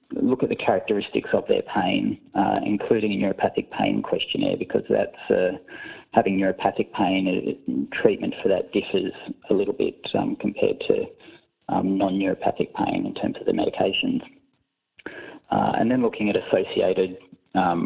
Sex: male